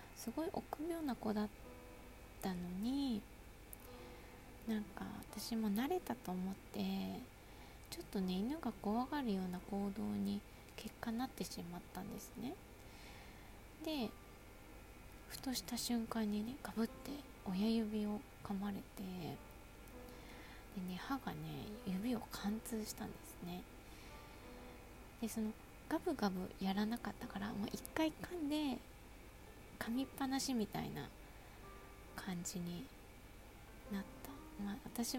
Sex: female